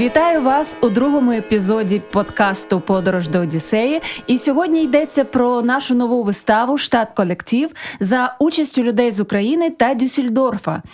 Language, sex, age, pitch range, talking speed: German, female, 20-39, 210-265 Hz, 135 wpm